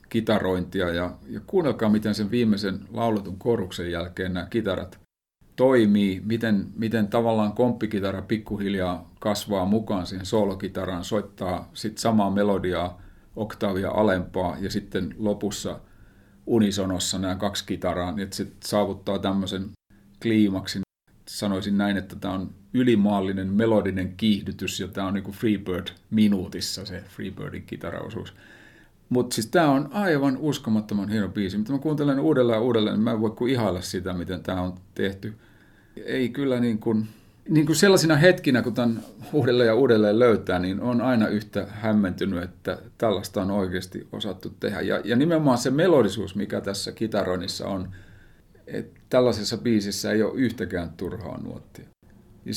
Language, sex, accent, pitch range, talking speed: Finnish, male, native, 95-115 Hz, 135 wpm